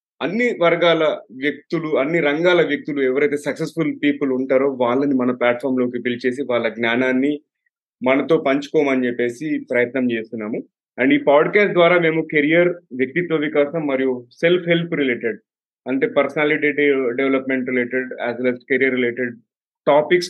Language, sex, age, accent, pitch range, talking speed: Telugu, male, 30-49, native, 125-155 Hz, 125 wpm